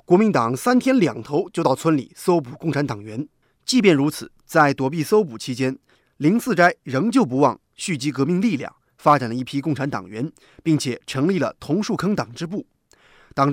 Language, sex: Chinese, male